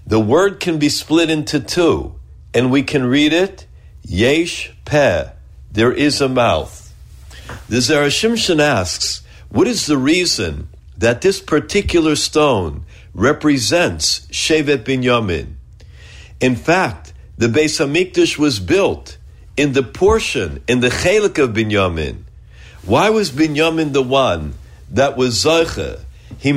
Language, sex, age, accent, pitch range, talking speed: English, male, 60-79, American, 105-165 Hz, 125 wpm